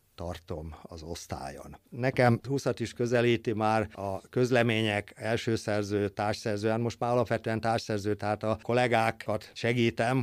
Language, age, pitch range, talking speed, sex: Hungarian, 50-69, 105-125 Hz, 130 wpm, male